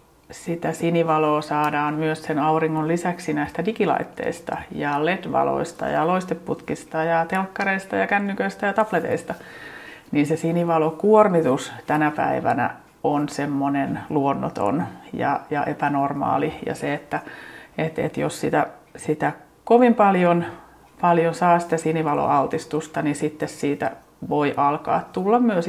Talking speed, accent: 120 wpm, native